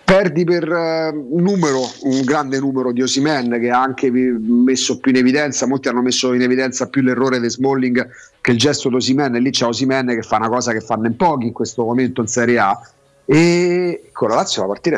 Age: 40-59